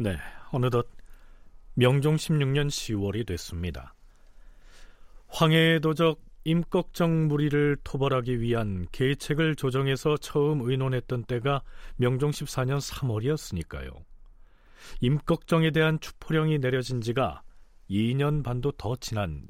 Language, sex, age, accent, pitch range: Korean, male, 40-59, native, 95-150 Hz